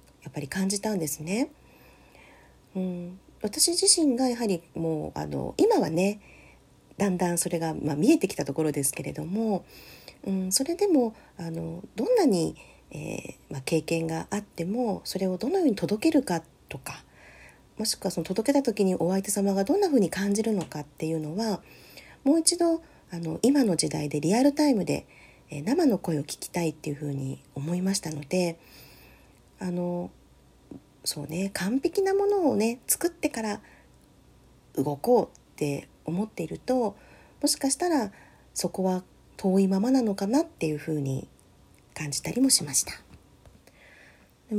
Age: 40-59